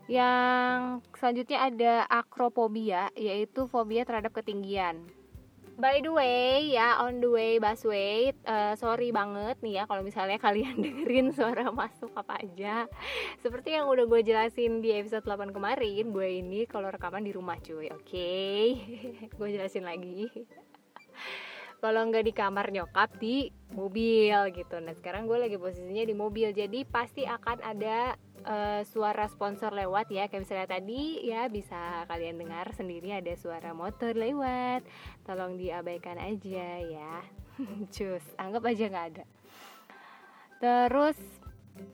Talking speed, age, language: 135 wpm, 20-39, Indonesian